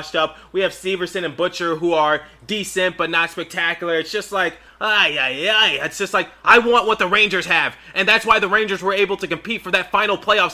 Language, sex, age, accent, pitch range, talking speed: English, male, 20-39, American, 160-190 Hz, 230 wpm